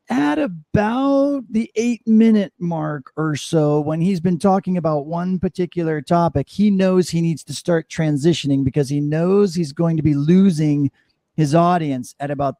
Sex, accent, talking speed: male, American, 165 wpm